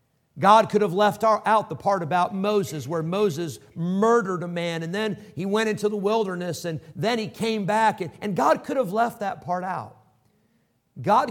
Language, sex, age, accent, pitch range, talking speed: English, male, 50-69, American, 155-220 Hz, 185 wpm